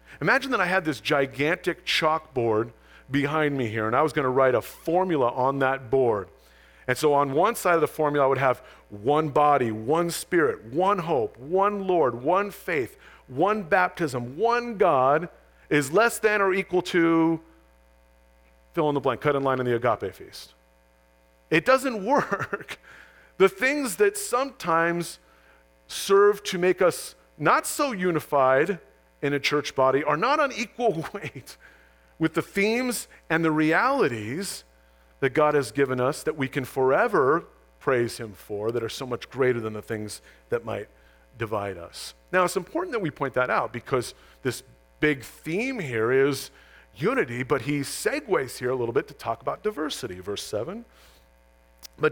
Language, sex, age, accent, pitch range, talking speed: English, male, 40-59, American, 110-180 Hz, 165 wpm